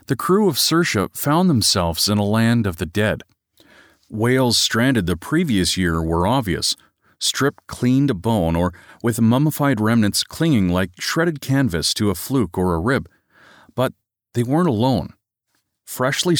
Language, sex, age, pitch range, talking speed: English, male, 40-59, 95-130 Hz, 155 wpm